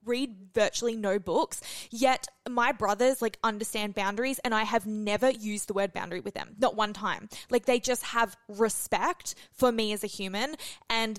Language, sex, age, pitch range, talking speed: English, female, 10-29, 200-240 Hz, 180 wpm